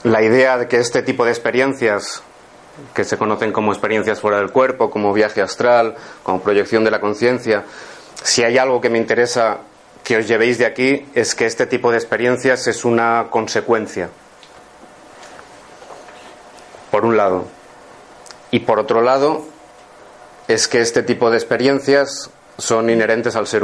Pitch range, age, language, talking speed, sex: 115-130 Hz, 30-49, Spanish, 155 wpm, male